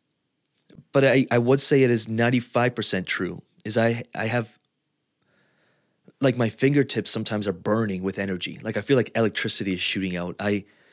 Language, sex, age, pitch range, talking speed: English, male, 30-49, 100-130 Hz, 165 wpm